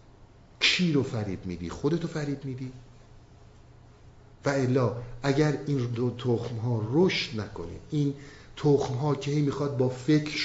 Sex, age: male, 50-69